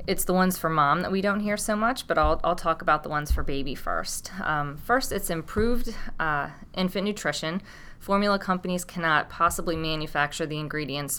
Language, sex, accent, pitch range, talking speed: English, female, American, 150-185 Hz, 190 wpm